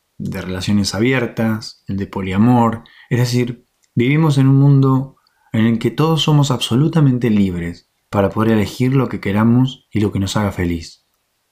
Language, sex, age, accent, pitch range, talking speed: Spanish, male, 20-39, Argentinian, 100-130 Hz, 160 wpm